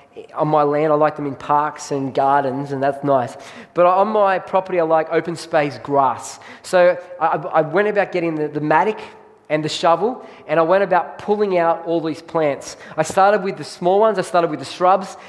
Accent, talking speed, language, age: Australian, 210 wpm, English, 20-39